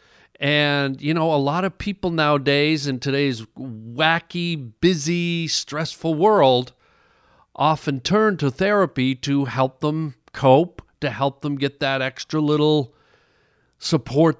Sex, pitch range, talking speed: male, 125-165 Hz, 125 wpm